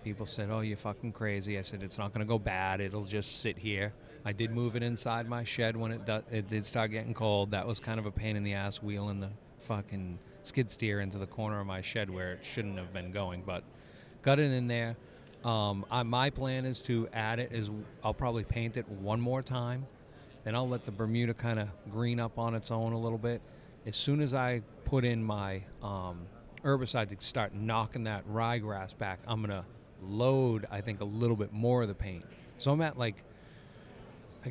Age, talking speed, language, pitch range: 30-49, 220 wpm, English, 105-120 Hz